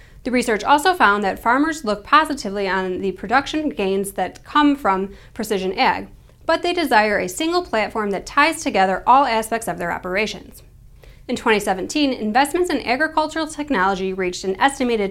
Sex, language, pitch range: female, English, 195-295 Hz